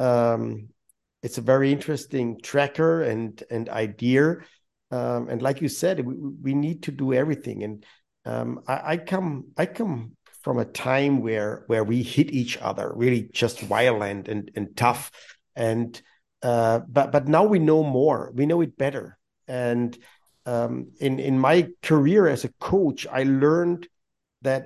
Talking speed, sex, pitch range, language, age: 160 wpm, male, 120-145 Hz, German, 50-69